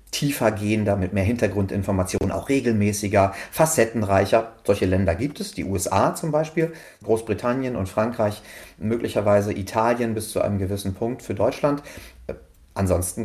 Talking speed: 130 wpm